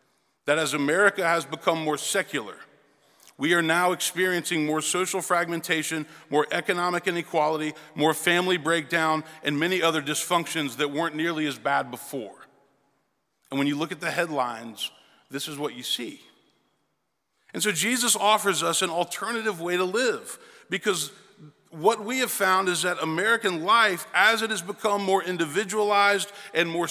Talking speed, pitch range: 155 wpm, 160-210 Hz